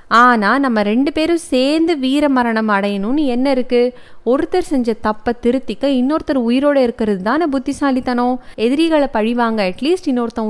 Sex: female